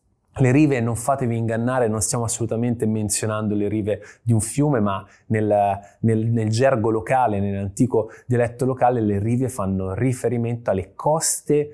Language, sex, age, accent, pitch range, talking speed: Italian, male, 20-39, native, 100-120 Hz, 145 wpm